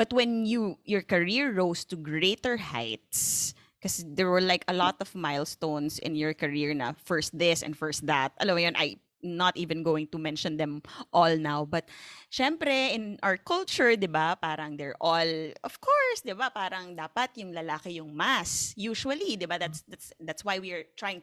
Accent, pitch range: native, 155-235 Hz